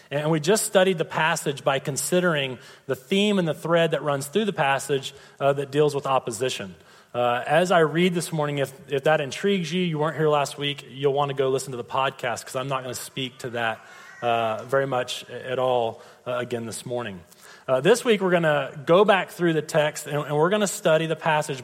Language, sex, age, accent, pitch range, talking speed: English, male, 30-49, American, 120-150 Hz, 220 wpm